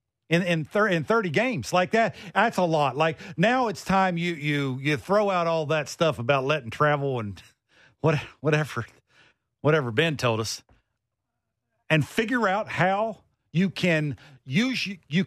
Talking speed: 160 wpm